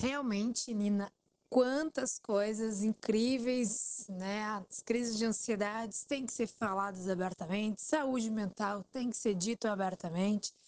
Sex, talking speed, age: female, 125 wpm, 20-39